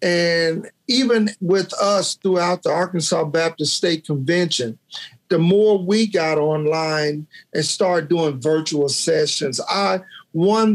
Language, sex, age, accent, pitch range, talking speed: English, male, 50-69, American, 160-195 Hz, 125 wpm